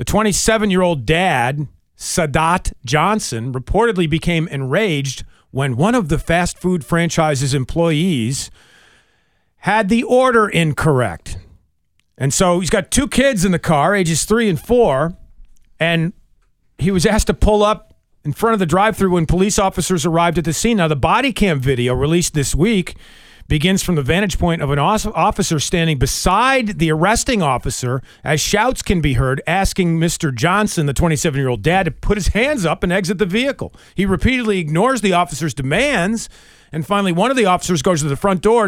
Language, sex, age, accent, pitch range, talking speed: English, male, 40-59, American, 150-205 Hz, 170 wpm